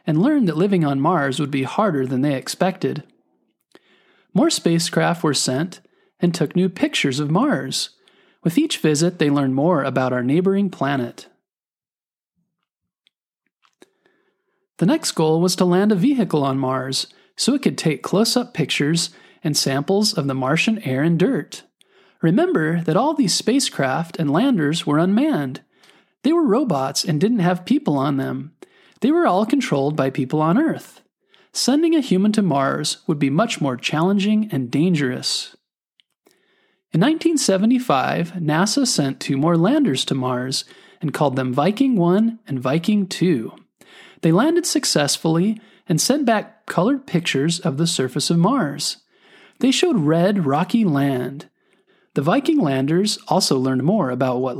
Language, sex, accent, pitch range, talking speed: English, male, American, 140-215 Hz, 150 wpm